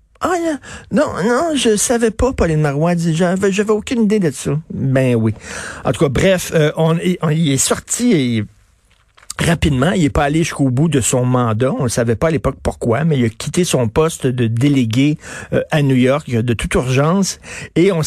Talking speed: 195 wpm